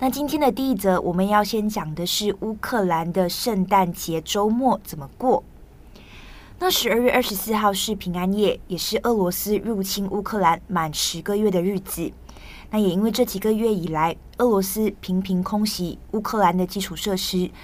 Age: 20-39